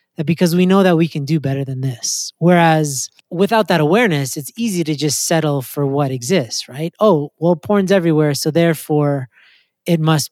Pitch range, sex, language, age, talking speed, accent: 145-175 Hz, male, English, 30-49, 185 wpm, American